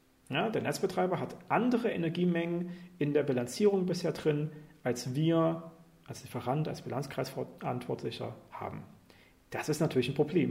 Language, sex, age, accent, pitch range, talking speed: German, male, 40-59, German, 130-170 Hz, 125 wpm